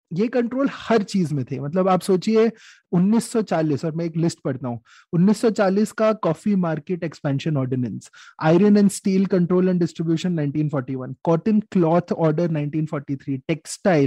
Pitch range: 150-205 Hz